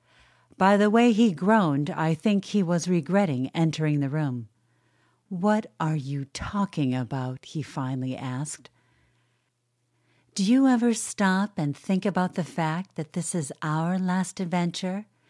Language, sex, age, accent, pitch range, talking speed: English, female, 50-69, American, 145-210 Hz, 140 wpm